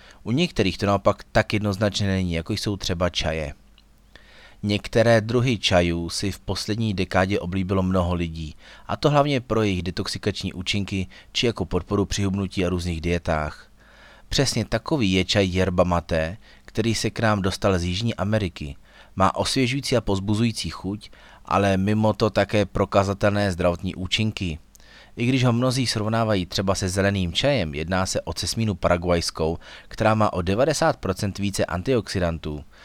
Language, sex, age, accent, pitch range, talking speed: Czech, male, 30-49, native, 90-105 Hz, 145 wpm